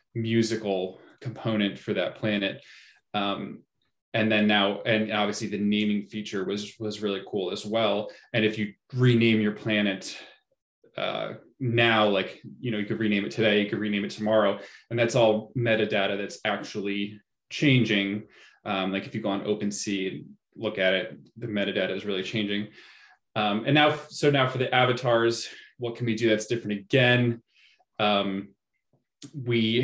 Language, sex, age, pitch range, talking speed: English, male, 20-39, 100-115 Hz, 165 wpm